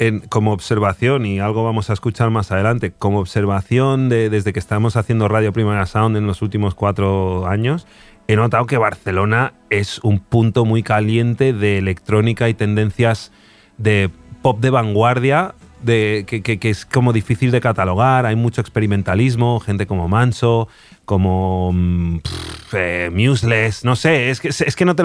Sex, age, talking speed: male, 30-49, 155 wpm